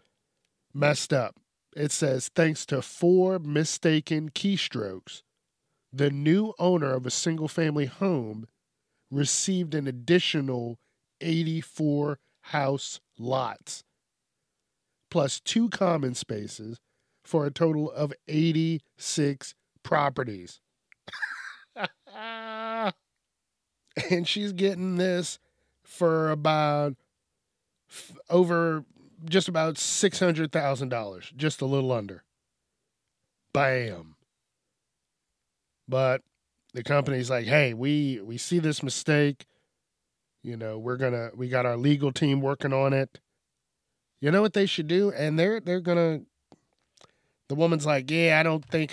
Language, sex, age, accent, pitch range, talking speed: English, male, 40-59, American, 130-170 Hz, 110 wpm